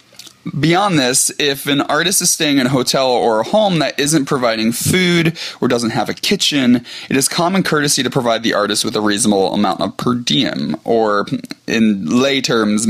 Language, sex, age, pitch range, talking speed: English, male, 20-39, 110-150 Hz, 190 wpm